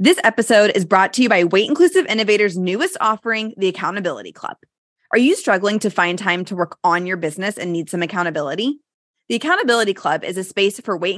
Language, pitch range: English, 185-250 Hz